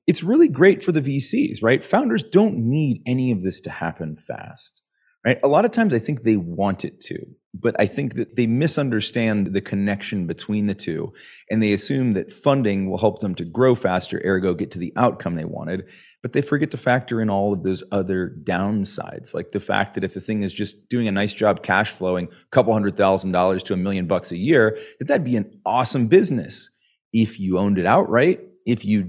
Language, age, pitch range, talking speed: English, 30-49, 100-145 Hz, 220 wpm